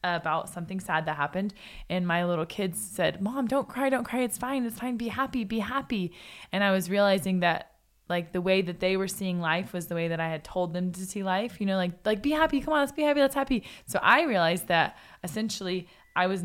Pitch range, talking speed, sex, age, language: 170-215 Hz, 245 wpm, female, 20-39, English